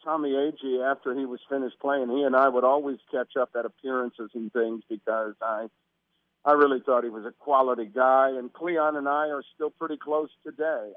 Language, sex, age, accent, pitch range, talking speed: English, male, 50-69, American, 125-145 Hz, 200 wpm